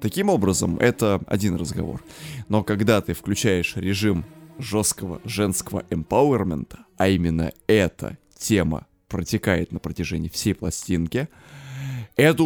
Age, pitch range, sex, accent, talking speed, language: 20-39, 95-140 Hz, male, native, 110 wpm, Russian